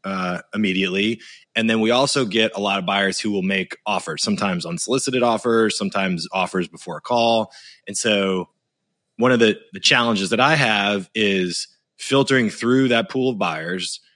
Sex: male